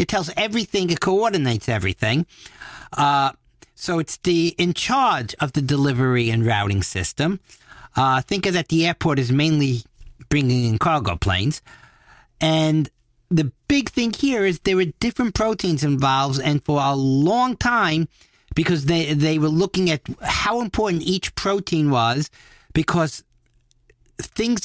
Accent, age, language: American, 50-69, English